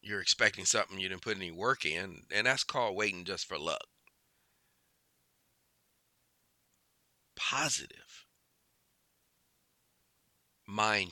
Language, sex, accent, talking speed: English, male, American, 95 wpm